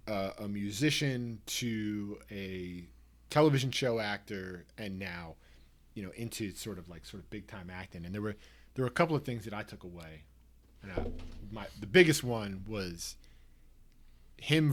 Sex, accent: male, American